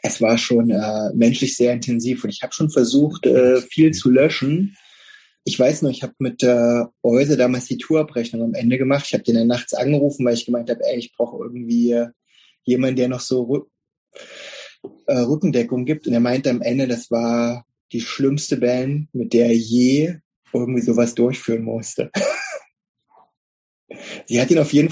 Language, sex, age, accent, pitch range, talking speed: German, male, 30-49, German, 120-155 Hz, 180 wpm